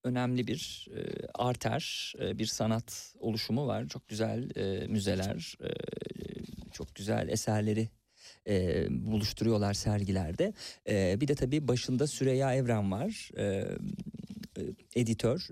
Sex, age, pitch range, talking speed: male, 50-69, 110-145 Hz, 115 wpm